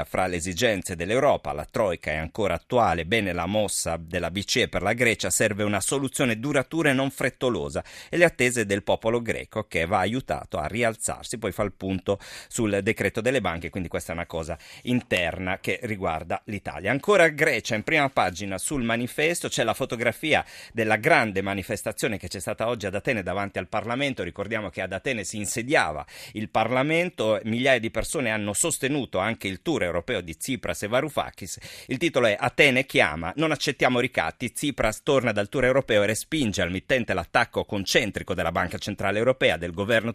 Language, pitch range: Italian, 100-130 Hz